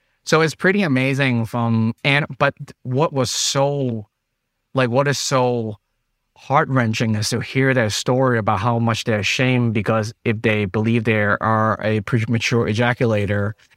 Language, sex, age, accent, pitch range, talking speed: English, male, 30-49, American, 110-130 Hz, 150 wpm